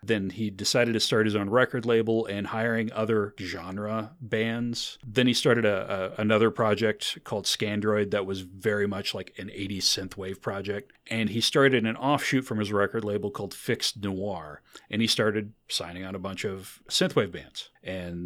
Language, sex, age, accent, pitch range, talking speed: English, male, 40-59, American, 100-125 Hz, 175 wpm